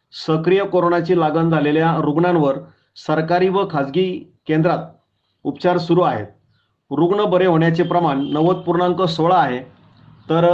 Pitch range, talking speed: 155-180 Hz, 110 wpm